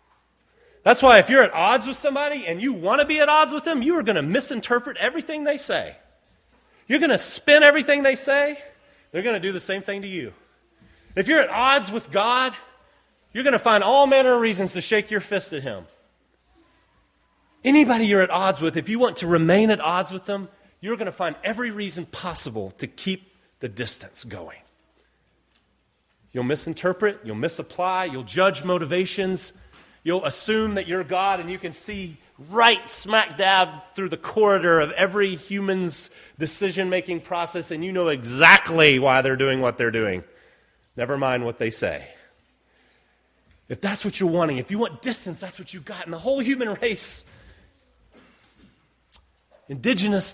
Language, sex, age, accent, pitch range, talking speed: English, male, 30-49, American, 175-255 Hz, 175 wpm